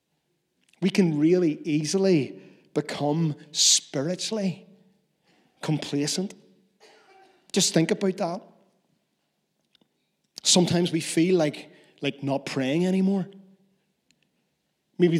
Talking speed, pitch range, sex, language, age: 80 wpm, 150-190 Hz, male, English, 40-59